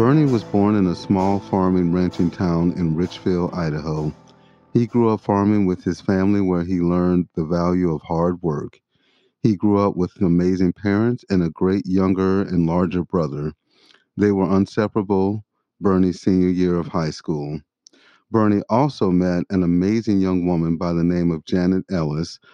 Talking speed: 165 wpm